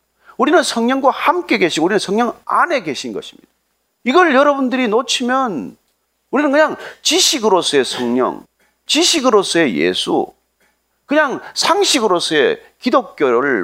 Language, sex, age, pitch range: Korean, male, 40-59, 210-310 Hz